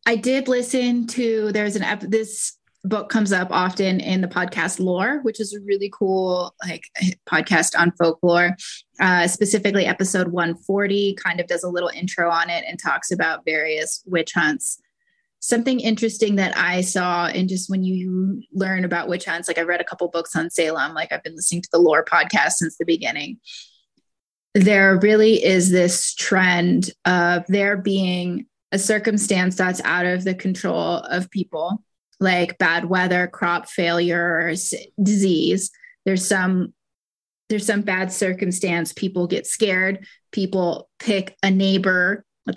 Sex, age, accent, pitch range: female, 20-39, American, 175-205 Hz